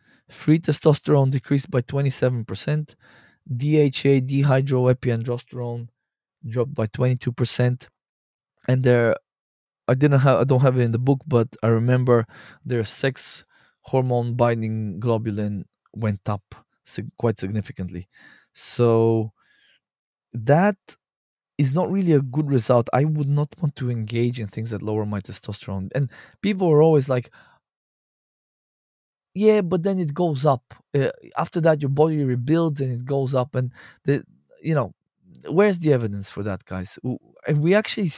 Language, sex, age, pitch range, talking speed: English, male, 20-39, 120-150 Hz, 145 wpm